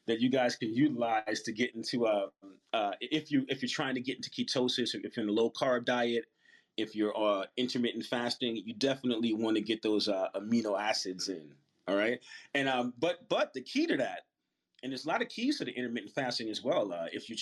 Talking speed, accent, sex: 230 wpm, American, male